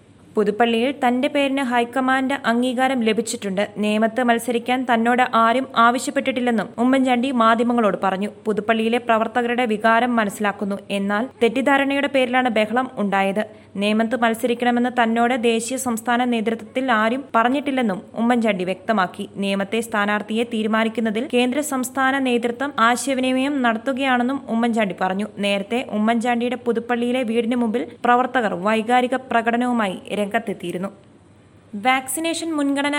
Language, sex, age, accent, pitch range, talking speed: Malayalam, female, 20-39, native, 225-260 Hz, 95 wpm